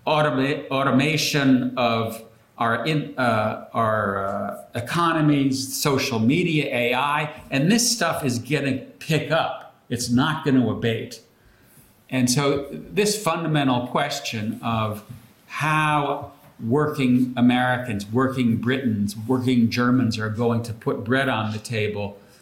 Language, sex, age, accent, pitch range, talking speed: English, male, 50-69, American, 115-145 Hz, 125 wpm